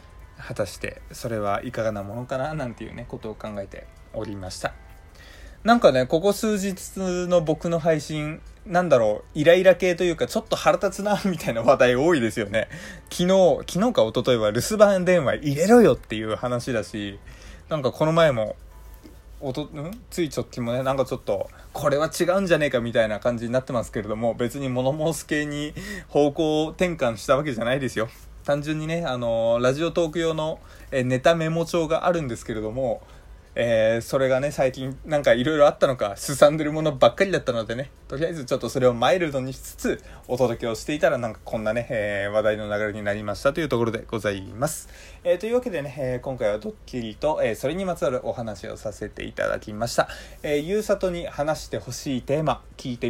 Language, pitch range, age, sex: Japanese, 115-165 Hz, 20-39, male